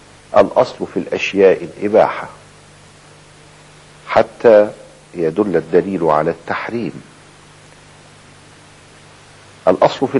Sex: male